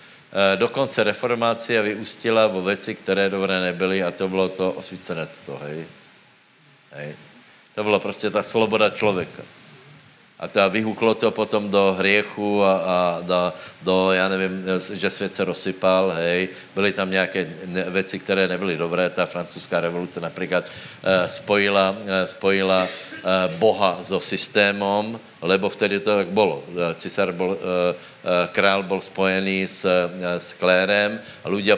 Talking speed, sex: 130 wpm, male